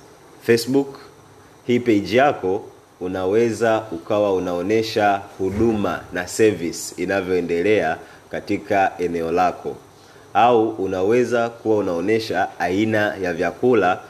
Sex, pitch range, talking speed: male, 95-115 Hz, 90 wpm